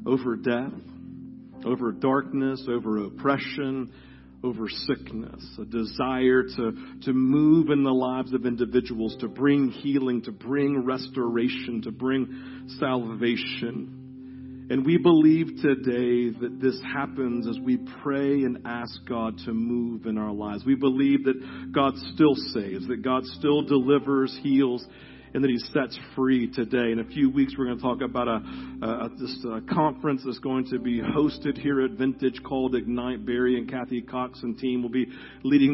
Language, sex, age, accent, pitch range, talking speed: English, male, 50-69, American, 120-140 Hz, 165 wpm